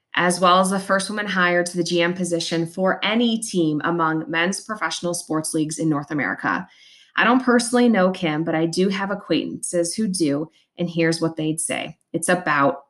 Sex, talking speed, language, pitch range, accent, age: female, 190 wpm, English, 165-200 Hz, American, 20-39